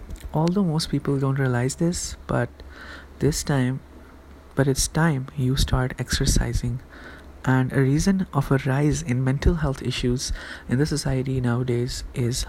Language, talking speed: English, 145 wpm